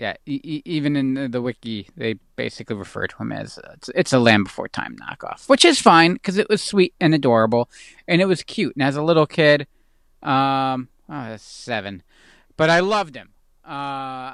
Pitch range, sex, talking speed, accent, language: 120-160 Hz, male, 190 wpm, American, English